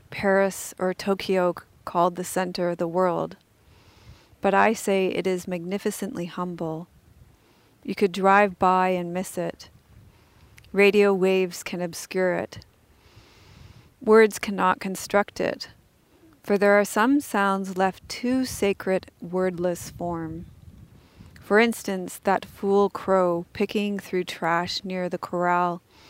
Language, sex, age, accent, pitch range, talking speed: English, female, 40-59, American, 175-200 Hz, 120 wpm